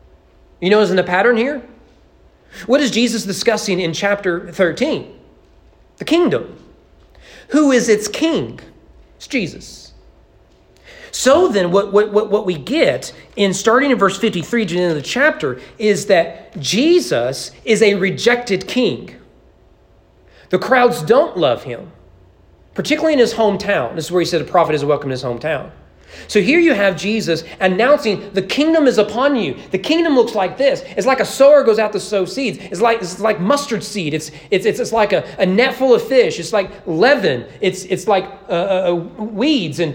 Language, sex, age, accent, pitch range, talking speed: English, male, 40-59, American, 175-240 Hz, 180 wpm